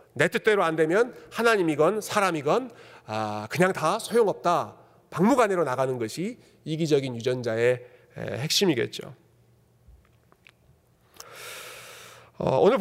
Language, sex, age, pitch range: Korean, male, 40-59, 150-225 Hz